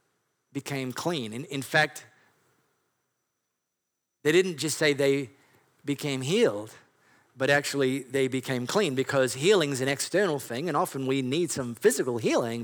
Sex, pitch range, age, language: male, 125-150 Hz, 40-59, English